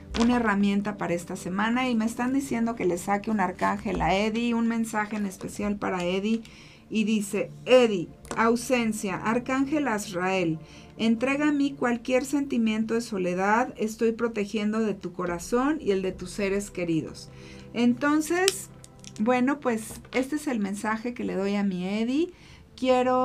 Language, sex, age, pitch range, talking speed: Spanish, female, 40-59, 195-245 Hz, 155 wpm